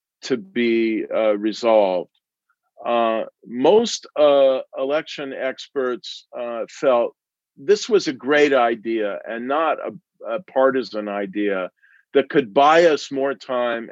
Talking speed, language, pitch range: 120 wpm, English, 105-135 Hz